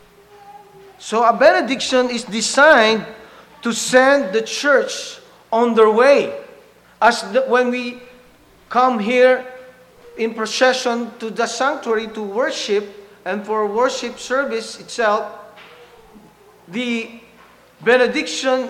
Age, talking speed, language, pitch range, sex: 40-59, 100 wpm, English, 215-255 Hz, male